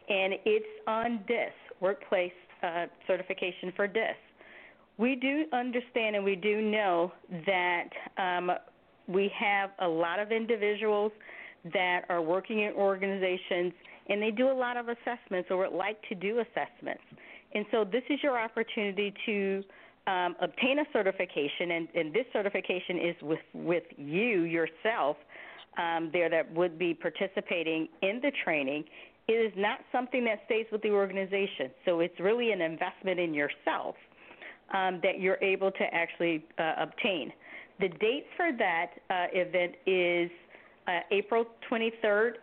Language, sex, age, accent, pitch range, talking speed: English, female, 40-59, American, 180-220 Hz, 150 wpm